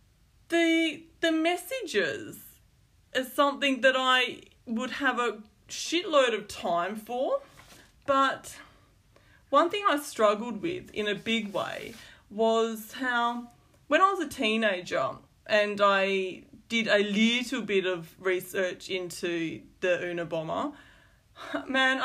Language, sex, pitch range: English, female, 195-265 Hz